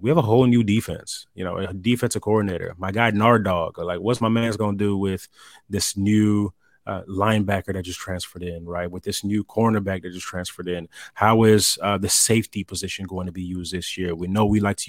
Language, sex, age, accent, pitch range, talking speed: English, male, 30-49, American, 95-115 Hz, 225 wpm